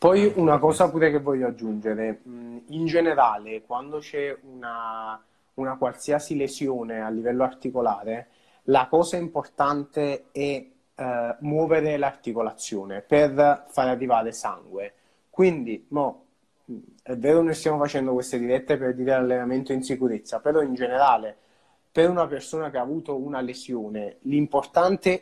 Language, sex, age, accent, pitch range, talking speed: Italian, male, 30-49, native, 125-160 Hz, 130 wpm